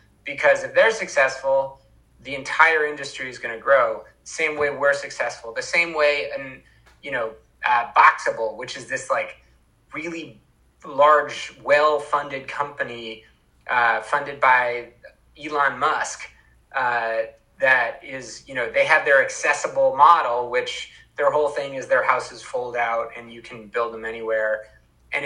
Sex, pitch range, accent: male, 115-150 Hz, American